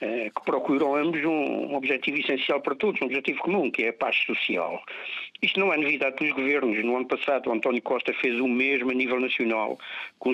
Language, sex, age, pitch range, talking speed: Portuguese, male, 50-69, 125-170 Hz, 205 wpm